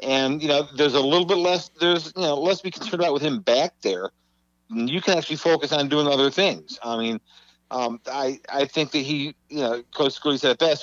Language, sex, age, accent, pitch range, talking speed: English, male, 50-69, American, 115-145 Hz, 235 wpm